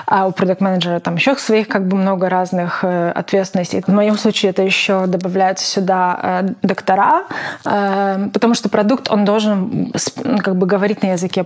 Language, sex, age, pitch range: Russian, female, 20-39, 190-225 Hz